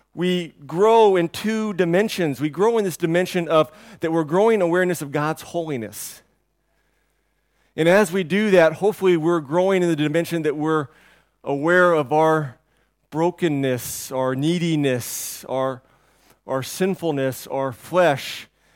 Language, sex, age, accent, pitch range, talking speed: English, male, 40-59, American, 140-180 Hz, 135 wpm